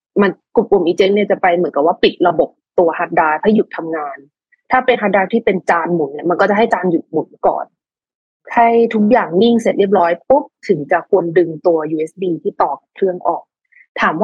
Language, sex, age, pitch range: Thai, female, 20-39, 175-235 Hz